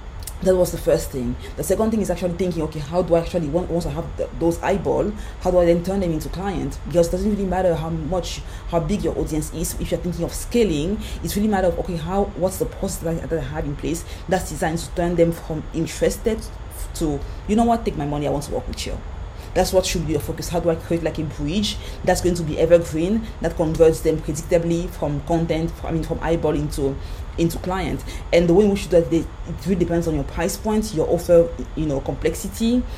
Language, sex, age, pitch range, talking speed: English, female, 20-39, 155-180 Hz, 245 wpm